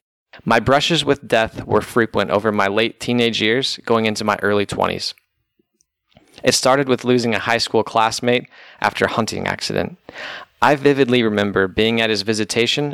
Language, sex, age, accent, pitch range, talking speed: English, male, 20-39, American, 105-125 Hz, 160 wpm